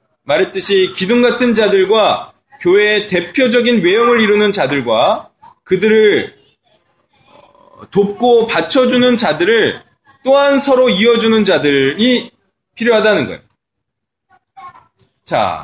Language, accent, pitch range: Korean, native, 190-245 Hz